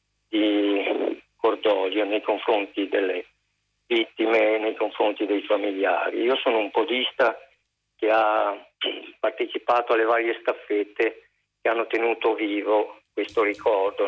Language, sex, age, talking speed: Italian, male, 50-69, 115 wpm